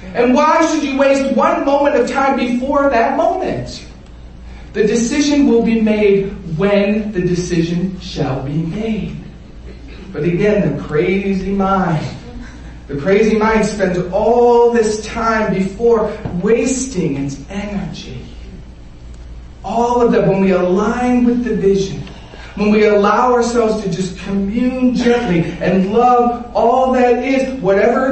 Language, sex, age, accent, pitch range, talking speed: English, male, 40-59, American, 190-260 Hz, 130 wpm